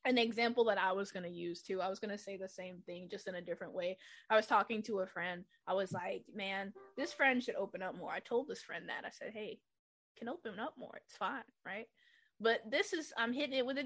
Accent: American